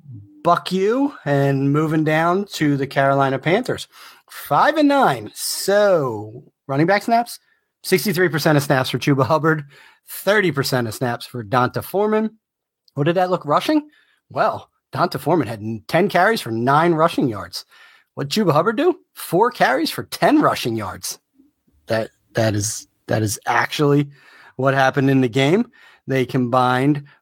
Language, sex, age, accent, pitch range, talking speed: English, male, 30-49, American, 125-180 Hz, 150 wpm